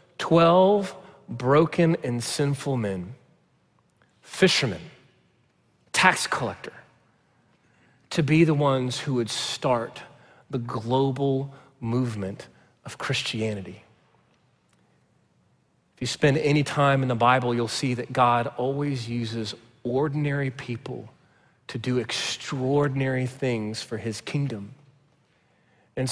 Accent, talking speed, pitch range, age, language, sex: American, 100 wpm, 120-150 Hz, 40-59, English, male